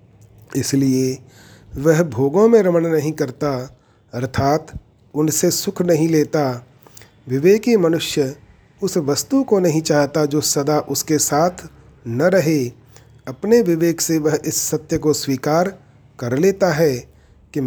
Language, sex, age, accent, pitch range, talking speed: Hindi, male, 40-59, native, 135-170 Hz, 125 wpm